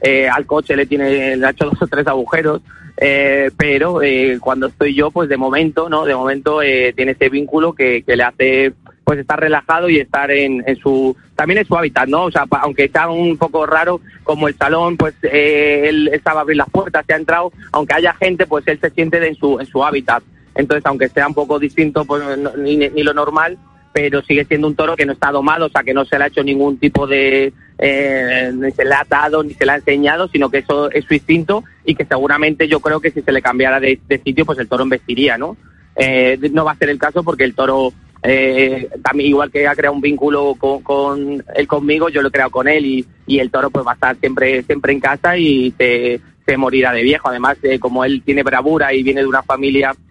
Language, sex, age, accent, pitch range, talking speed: Spanish, male, 30-49, Spanish, 135-155 Hz, 245 wpm